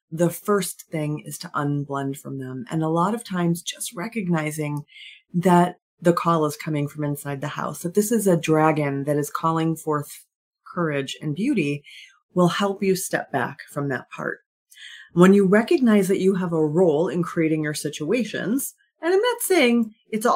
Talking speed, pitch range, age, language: 180 wpm, 150-205 Hz, 40-59, English